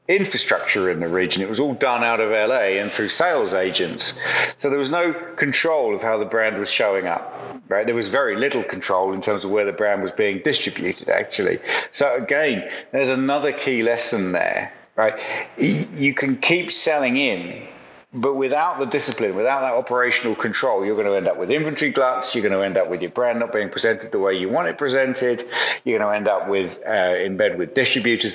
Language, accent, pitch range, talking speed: English, British, 100-130 Hz, 210 wpm